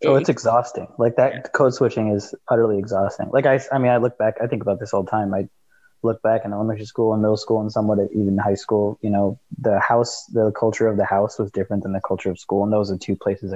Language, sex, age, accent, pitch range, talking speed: English, male, 20-39, American, 100-115 Hz, 260 wpm